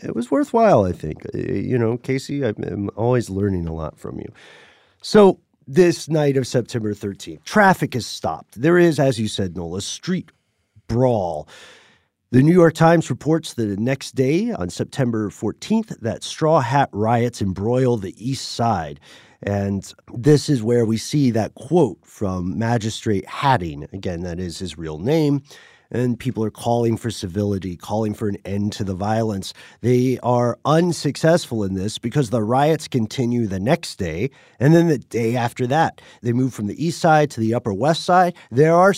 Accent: American